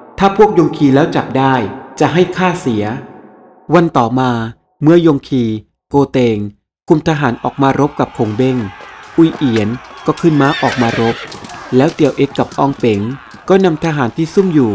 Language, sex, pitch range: Thai, male, 120-155 Hz